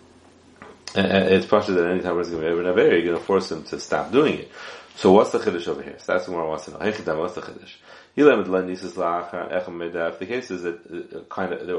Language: English